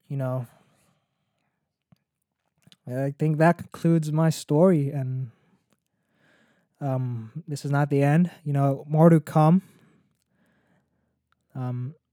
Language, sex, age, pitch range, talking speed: English, male, 20-39, 135-160 Hz, 105 wpm